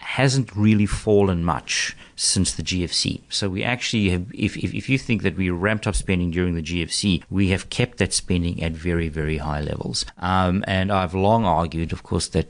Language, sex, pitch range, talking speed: English, male, 85-105 Hz, 200 wpm